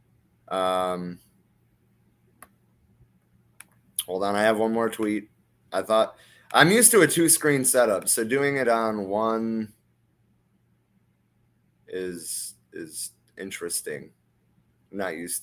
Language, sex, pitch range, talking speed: English, male, 95-130 Hz, 110 wpm